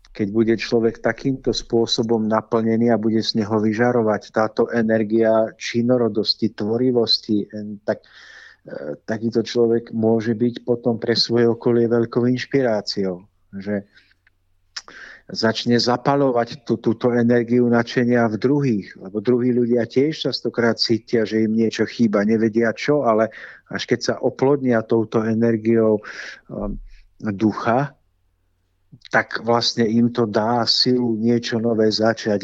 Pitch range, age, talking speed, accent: 110-120 Hz, 50-69, 120 wpm, native